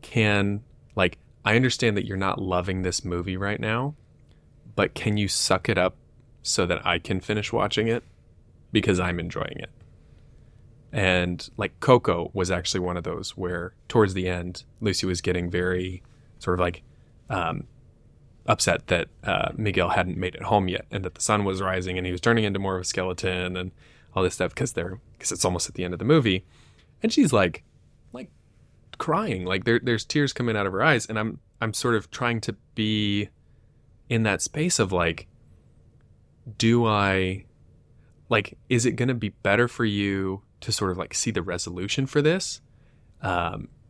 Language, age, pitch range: English, 20-39, 90-115 Hz